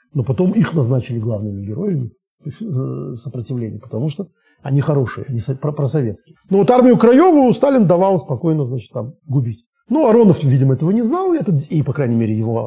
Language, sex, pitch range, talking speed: Russian, male, 115-160 Hz, 170 wpm